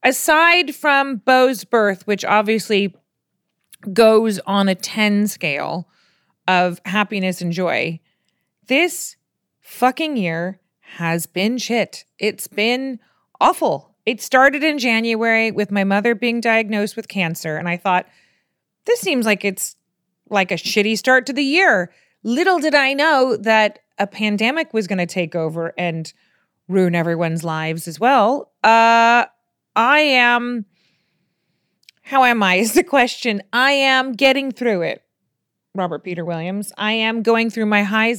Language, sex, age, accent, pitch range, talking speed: English, female, 30-49, American, 180-230 Hz, 140 wpm